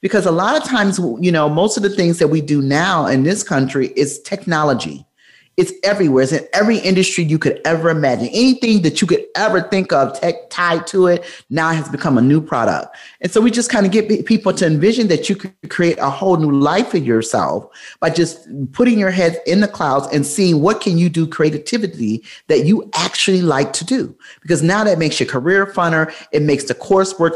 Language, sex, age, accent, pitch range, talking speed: English, male, 30-49, American, 145-190 Hz, 215 wpm